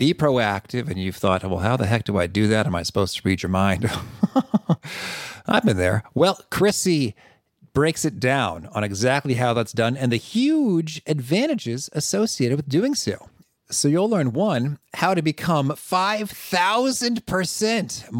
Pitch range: 110-170 Hz